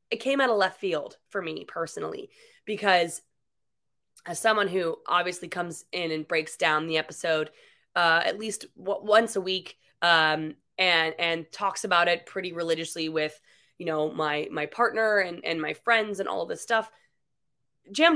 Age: 20-39